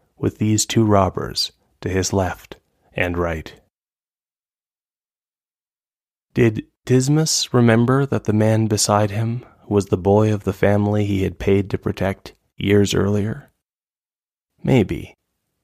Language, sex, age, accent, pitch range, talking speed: English, male, 20-39, American, 95-115 Hz, 120 wpm